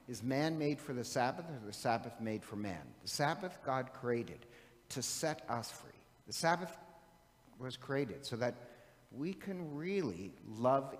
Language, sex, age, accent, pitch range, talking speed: English, male, 50-69, American, 120-150 Hz, 165 wpm